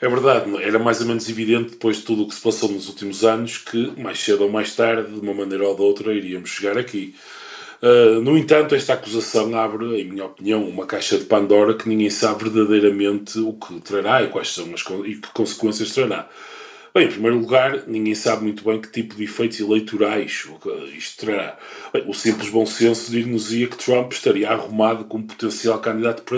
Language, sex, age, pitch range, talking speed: Portuguese, male, 20-39, 110-140 Hz, 205 wpm